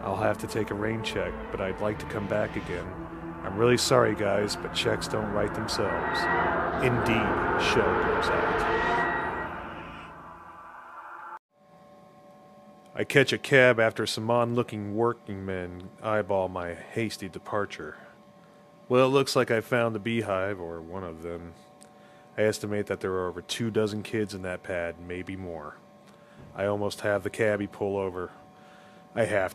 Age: 30-49